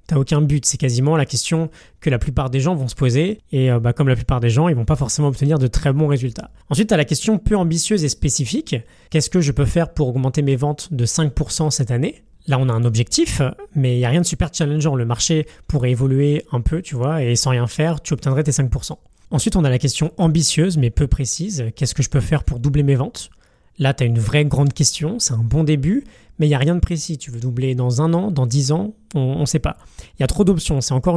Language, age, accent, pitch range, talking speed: French, 20-39, French, 130-160 Hz, 265 wpm